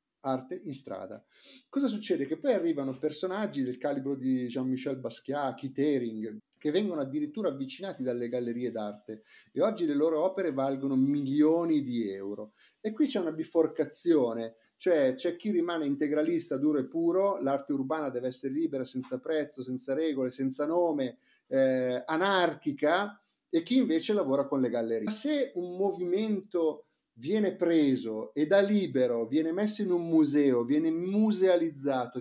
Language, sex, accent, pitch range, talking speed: Italian, male, native, 135-200 Hz, 145 wpm